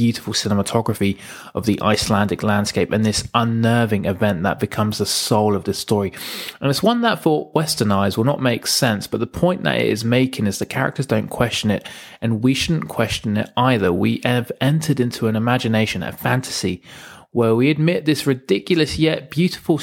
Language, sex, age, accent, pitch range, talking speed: English, male, 20-39, British, 105-135 Hz, 190 wpm